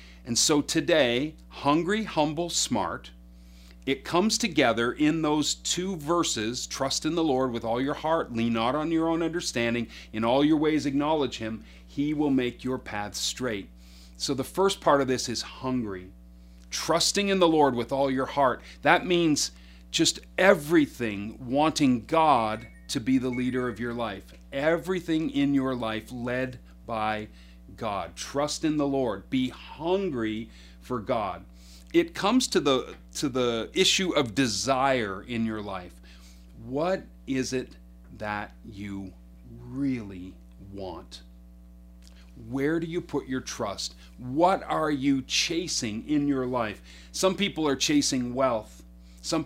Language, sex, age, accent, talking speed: English, male, 40-59, American, 145 wpm